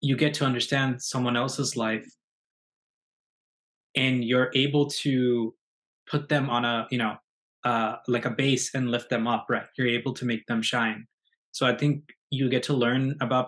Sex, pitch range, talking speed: male, 120-135 Hz, 180 wpm